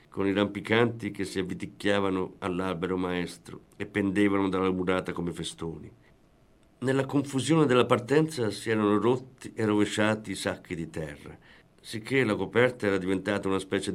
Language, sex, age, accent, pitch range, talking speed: Italian, male, 50-69, native, 90-110 Hz, 145 wpm